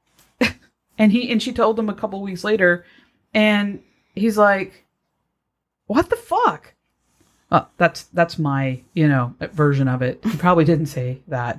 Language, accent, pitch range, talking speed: English, American, 135-170 Hz, 155 wpm